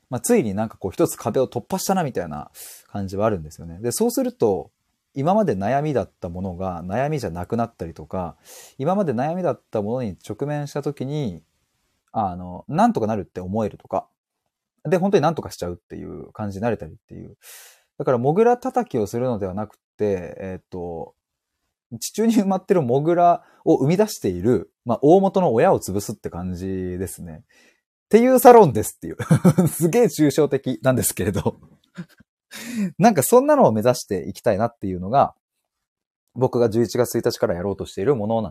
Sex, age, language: male, 20-39, Japanese